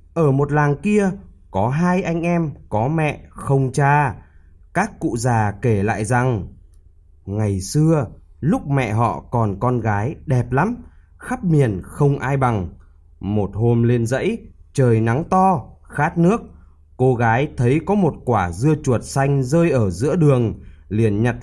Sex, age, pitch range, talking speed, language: male, 20-39, 105-155 Hz, 160 wpm, Vietnamese